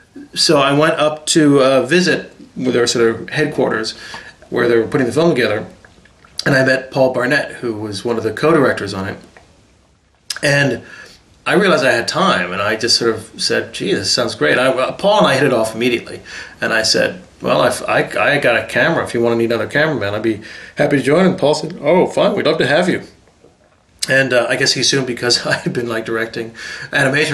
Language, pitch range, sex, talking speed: English, 120-150 Hz, male, 215 wpm